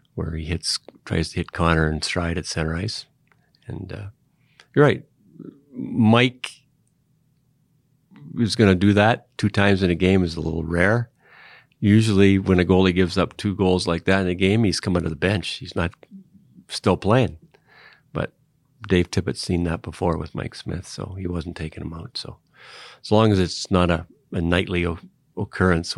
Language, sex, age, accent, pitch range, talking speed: English, male, 40-59, American, 85-110 Hz, 185 wpm